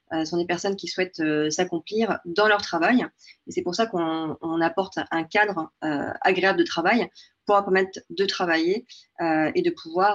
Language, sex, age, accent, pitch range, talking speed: French, female, 30-49, French, 165-220 Hz, 200 wpm